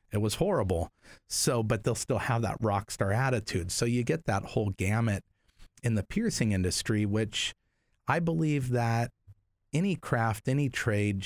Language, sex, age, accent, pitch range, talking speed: English, male, 40-59, American, 95-115 Hz, 160 wpm